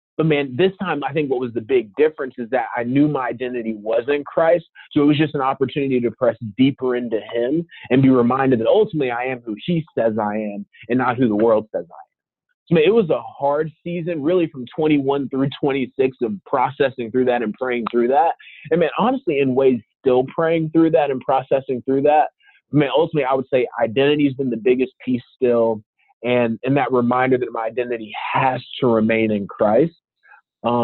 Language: English